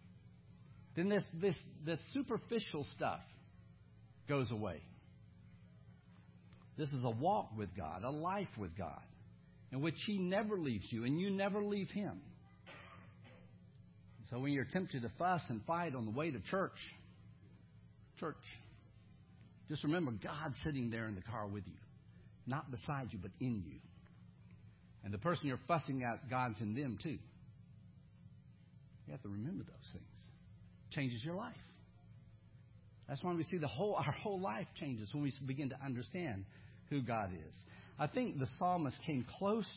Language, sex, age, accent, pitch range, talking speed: English, male, 60-79, American, 110-160 Hz, 155 wpm